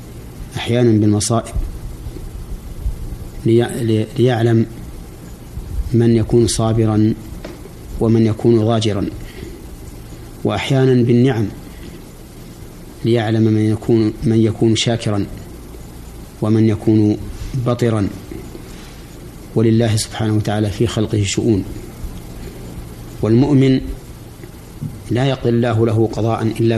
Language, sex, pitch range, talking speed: Arabic, male, 95-115 Hz, 75 wpm